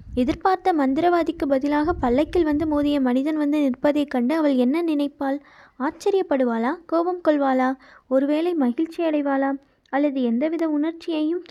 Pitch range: 270-320 Hz